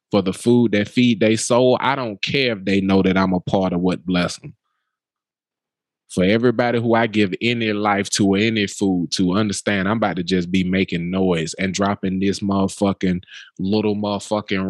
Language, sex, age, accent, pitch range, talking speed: English, male, 20-39, American, 95-115 Hz, 190 wpm